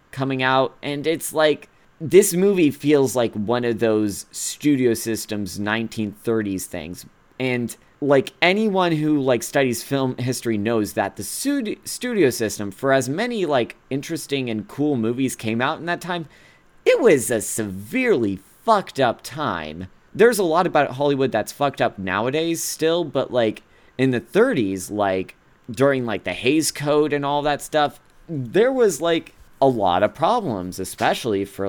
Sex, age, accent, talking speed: male, 30-49, American, 155 wpm